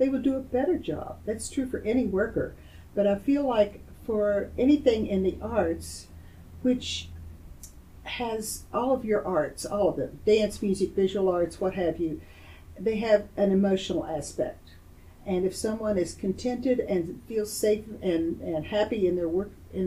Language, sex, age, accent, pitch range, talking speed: English, female, 50-69, American, 155-210 Hz, 165 wpm